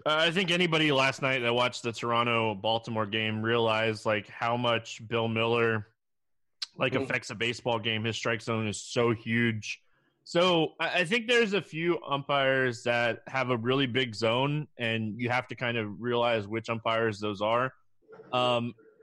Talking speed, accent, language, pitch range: 165 wpm, American, English, 115-135 Hz